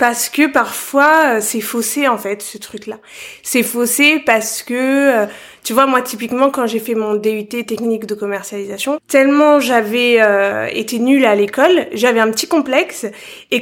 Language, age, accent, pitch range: French, 20-39, French, 220-290 Hz